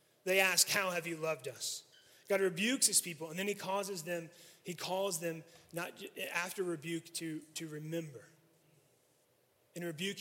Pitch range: 160-190 Hz